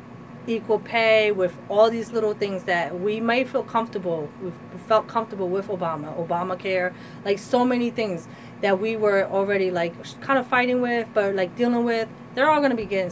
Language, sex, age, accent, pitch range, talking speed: English, female, 30-49, American, 180-220 Hz, 185 wpm